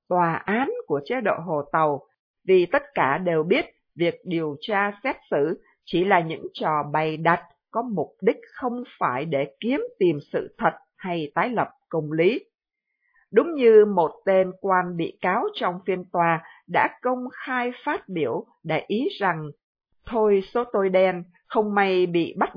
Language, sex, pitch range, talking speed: Vietnamese, female, 170-240 Hz, 170 wpm